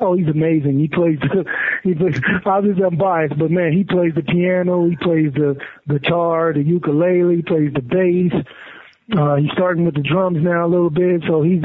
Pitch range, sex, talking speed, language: 155-185 Hz, male, 190 wpm, English